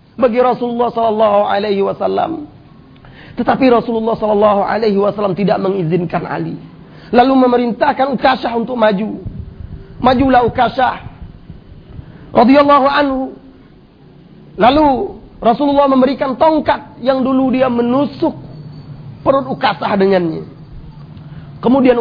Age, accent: 40-59, native